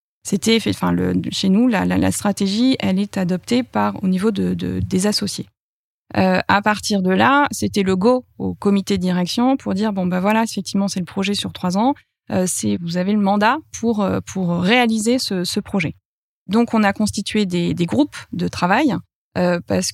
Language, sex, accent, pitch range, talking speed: French, female, French, 180-215 Hz, 210 wpm